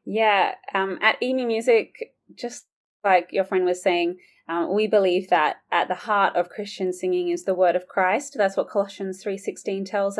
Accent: Australian